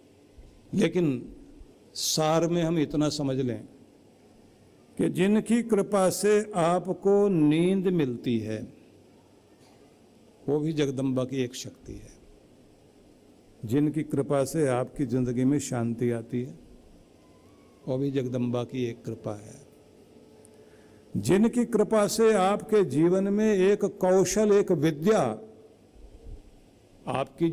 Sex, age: male, 60-79